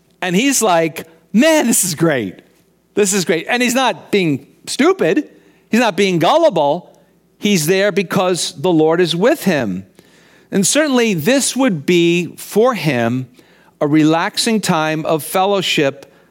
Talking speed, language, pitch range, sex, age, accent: 145 wpm, English, 130-190 Hz, male, 50-69, American